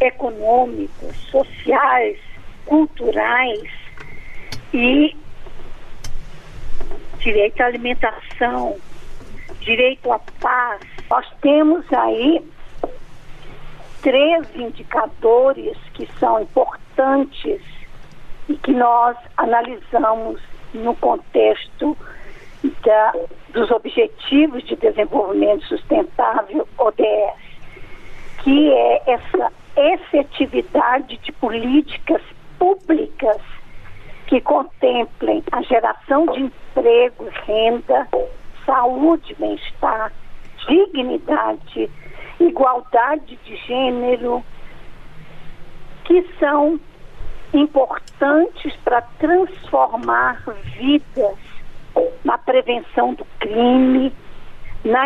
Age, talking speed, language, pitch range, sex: 50-69, 65 wpm, Portuguese, 240-315 Hz, female